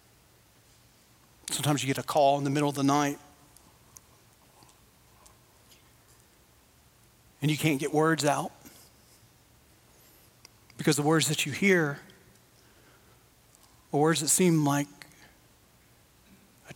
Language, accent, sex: English, American, male